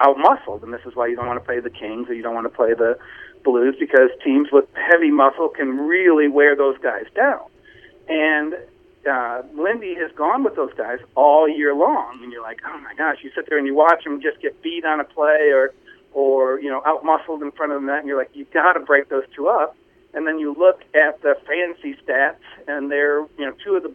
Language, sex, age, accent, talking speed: English, male, 40-59, American, 245 wpm